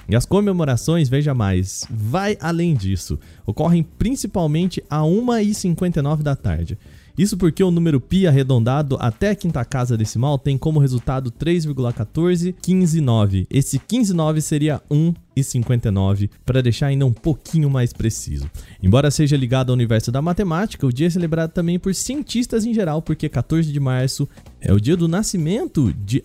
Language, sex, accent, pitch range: Portuguese, male, Brazilian, 120-170 Hz